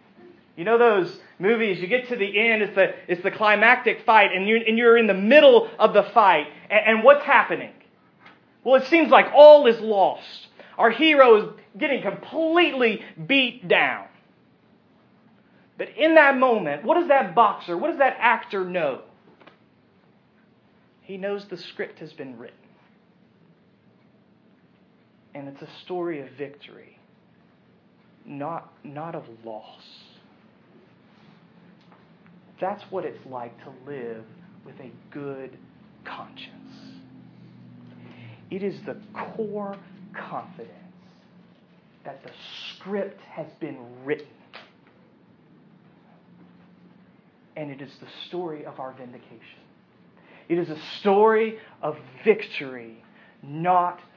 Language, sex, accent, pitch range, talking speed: English, male, American, 155-230 Hz, 120 wpm